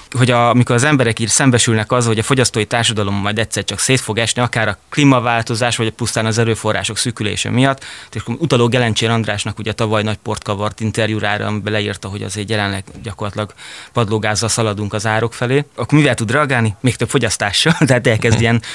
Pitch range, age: 110-125 Hz, 30-49